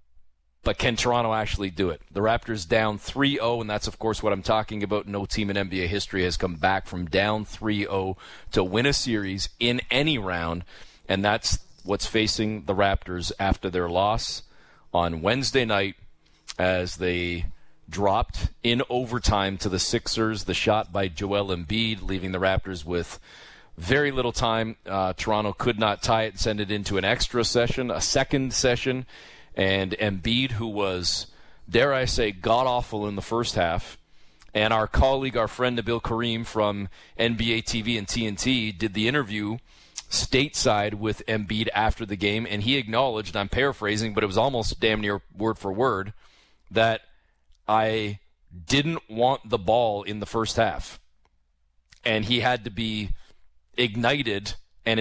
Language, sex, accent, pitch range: English, male, American, 95-115 Hz